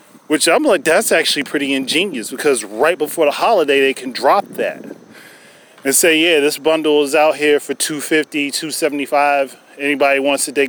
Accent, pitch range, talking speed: American, 130-155 Hz, 175 wpm